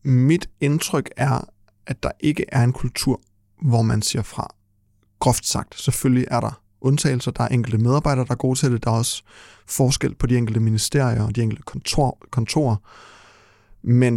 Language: Danish